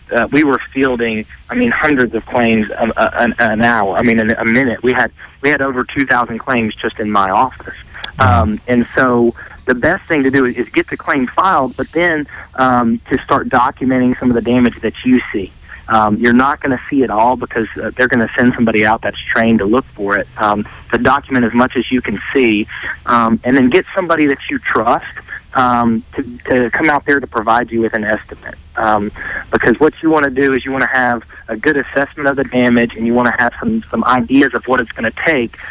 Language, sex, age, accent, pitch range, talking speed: English, male, 30-49, American, 115-135 Hz, 235 wpm